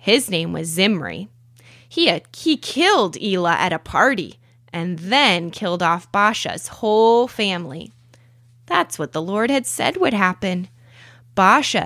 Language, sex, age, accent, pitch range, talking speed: English, female, 20-39, American, 125-215 Hz, 135 wpm